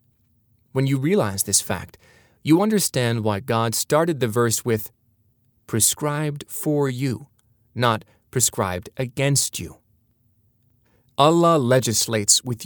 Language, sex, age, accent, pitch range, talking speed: English, male, 30-49, American, 110-130 Hz, 110 wpm